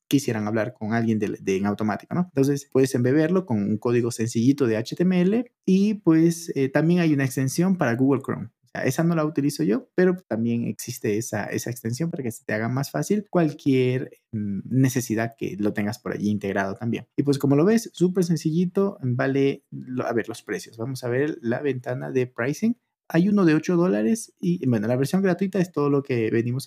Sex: male